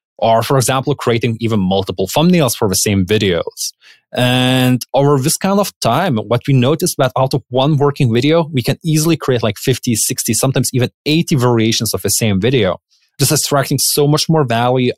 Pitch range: 105-140 Hz